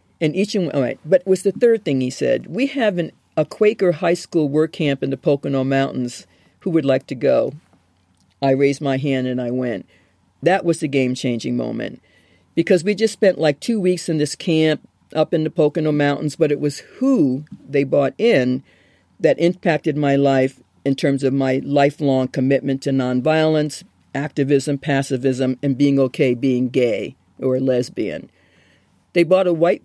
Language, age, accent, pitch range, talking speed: English, 50-69, American, 135-185 Hz, 175 wpm